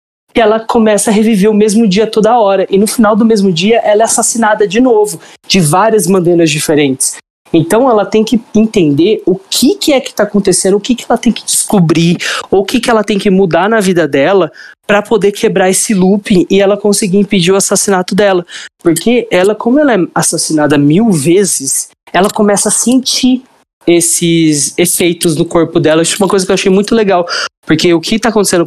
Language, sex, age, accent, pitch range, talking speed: Portuguese, male, 20-39, Brazilian, 170-215 Hz, 205 wpm